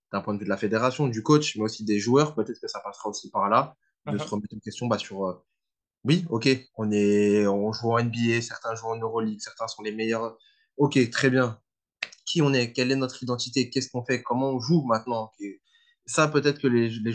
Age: 20-39